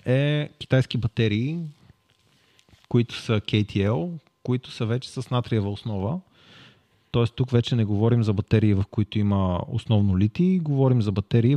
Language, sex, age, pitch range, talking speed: Bulgarian, male, 30-49, 105-130 Hz, 140 wpm